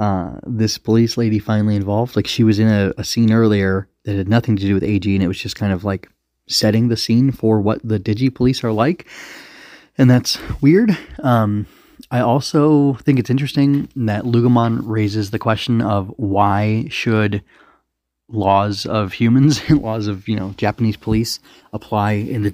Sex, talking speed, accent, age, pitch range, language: male, 180 wpm, American, 30-49, 100-120 Hz, English